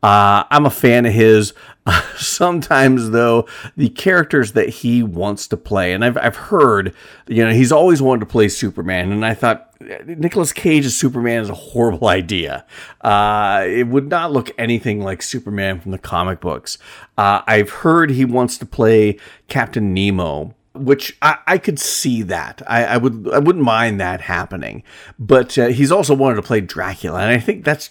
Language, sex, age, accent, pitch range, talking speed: English, male, 40-59, American, 100-140 Hz, 180 wpm